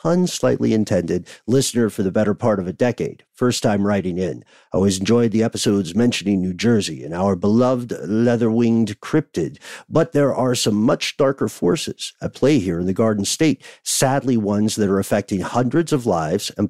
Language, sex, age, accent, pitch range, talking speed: English, male, 50-69, American, 100-130 Hz, 185 wpm